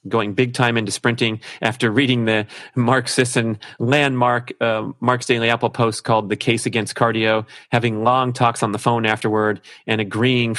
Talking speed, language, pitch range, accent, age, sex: 170 wpm, English, 105-120 Hz, American, 30-49, male